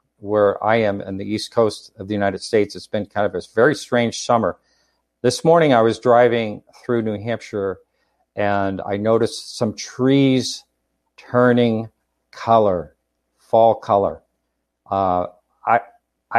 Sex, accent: male, American